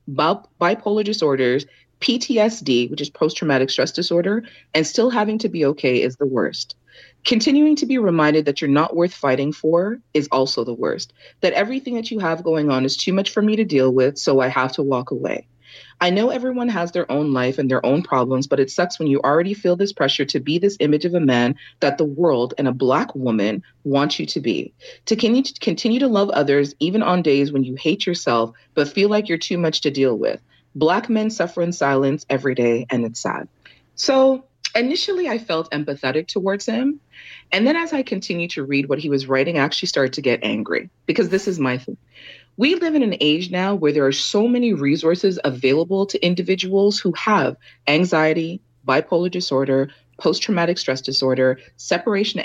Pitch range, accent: 135-200 Hz, American